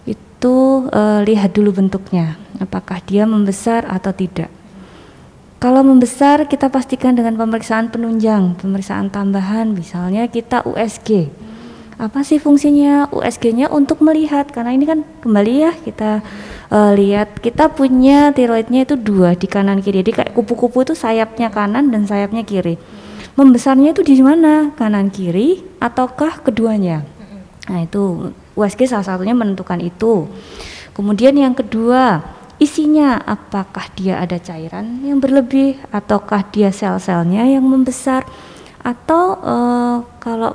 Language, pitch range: Indonesian, 200-265 Hz